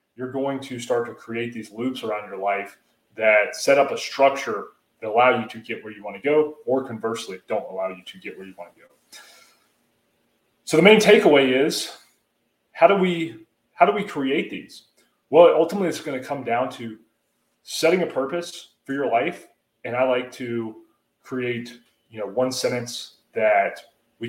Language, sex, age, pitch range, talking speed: English, male, 30-49, 115-140 Hz, 185 wpm